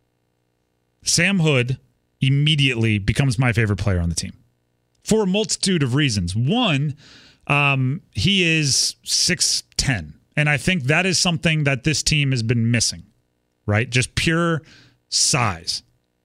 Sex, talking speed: male, 135 wpm